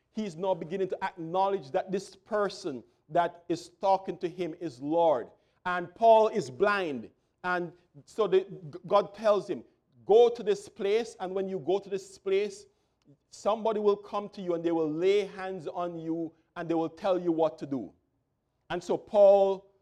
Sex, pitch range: male, 165-195 Hz